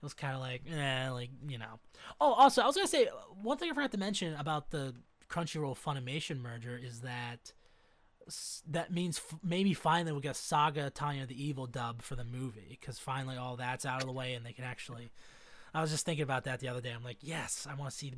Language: English